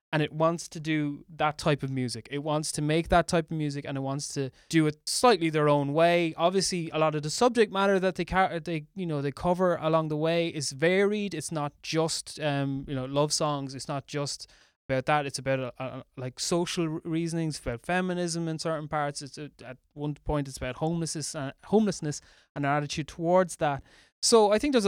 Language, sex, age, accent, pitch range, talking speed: English, male, 20-39, Irish, 140-170 Hz, 215 wpm